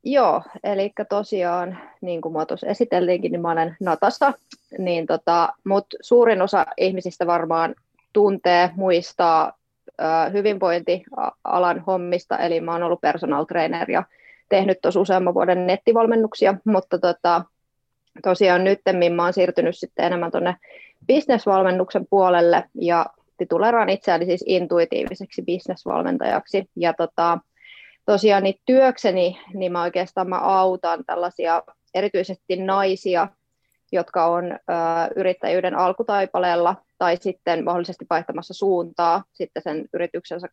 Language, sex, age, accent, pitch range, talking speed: Finnish, female, 20-39, native, 170-195 Hz, 115 wpm